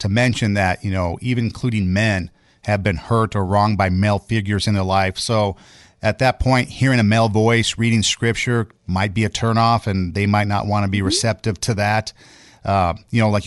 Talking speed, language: 210 wpm, English